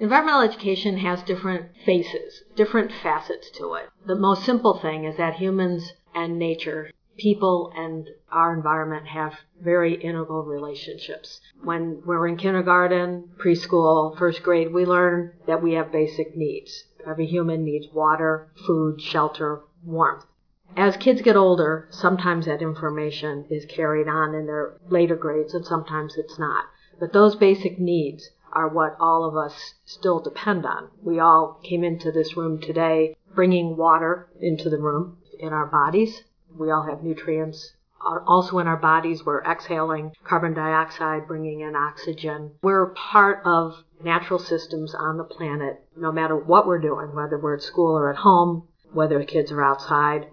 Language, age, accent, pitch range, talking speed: English, 50-69, American, 155-180 Hz, 155 wpm